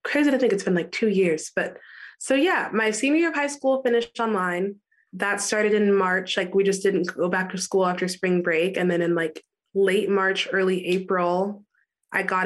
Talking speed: 210 wpm